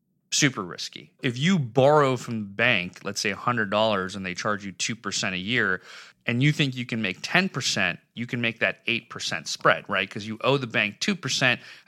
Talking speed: 190 wpm